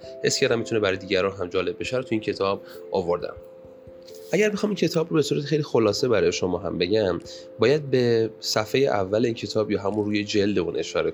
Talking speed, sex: 200 wpm, male